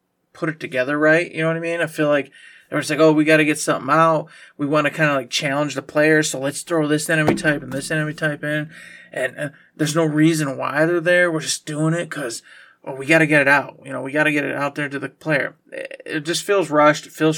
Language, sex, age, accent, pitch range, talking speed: English, male, 20-39, American, 135-160 Hz, 280 wpm